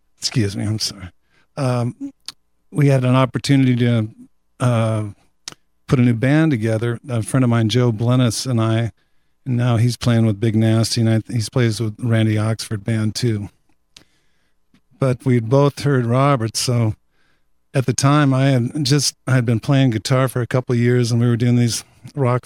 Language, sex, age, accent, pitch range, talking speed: English, male, 50-69, American, 115-125 Hz, 180 wpm